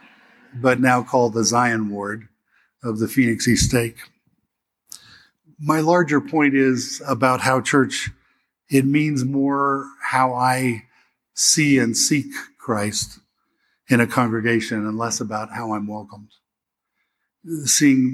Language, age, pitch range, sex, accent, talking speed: English, 50-69, 115-135 Hz, male, American, 120 wpm